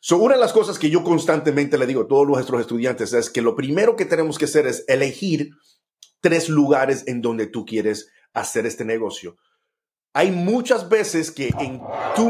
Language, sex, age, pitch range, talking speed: Spanish, male, 40-59, 130-170 Hz, 190 wpm